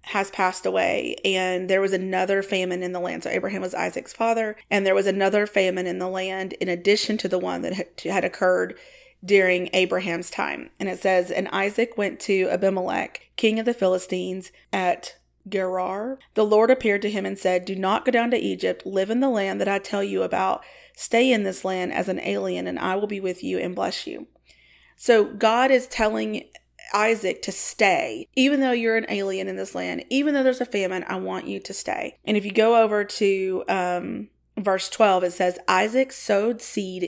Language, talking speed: English, 205 wpm